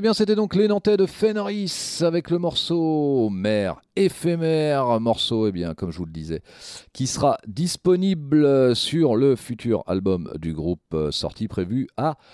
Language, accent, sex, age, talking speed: French, French, male, 40-59, 160 wpm